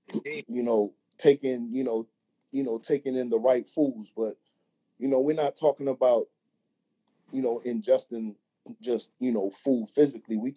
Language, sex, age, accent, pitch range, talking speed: English, male, 30-49, American, 110-130 Hz, 160 wpm